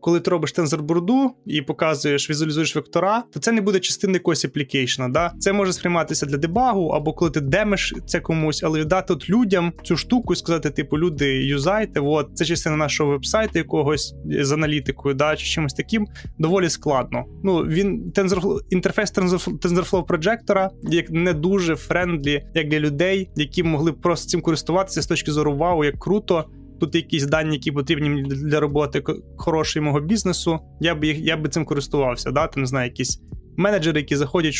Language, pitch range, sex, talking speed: Ukrainian, 150-180 Hz, male, 165 wpm